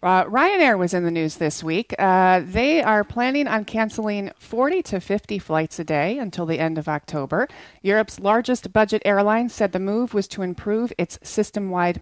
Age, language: 30-49, English